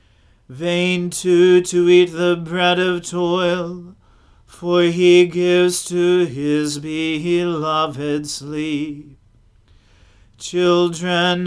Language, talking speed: English, 85 wpm